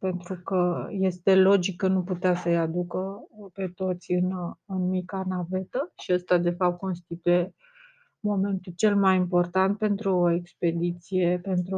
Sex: female